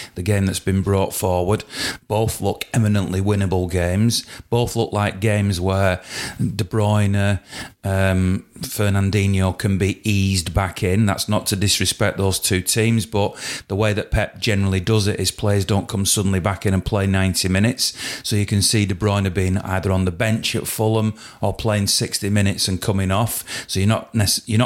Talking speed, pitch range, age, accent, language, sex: 185 wpm, 95-110 Hz, 40-59, British, English, male